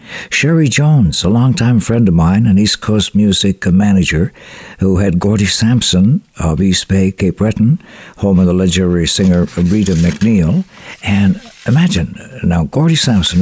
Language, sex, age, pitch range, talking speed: English, male, 60-79, 90-120 Hz, 150 wpm